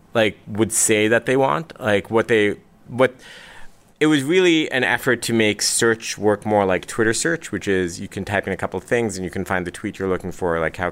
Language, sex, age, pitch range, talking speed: English, male, 30-49, 95-115 Hz, 240 wpm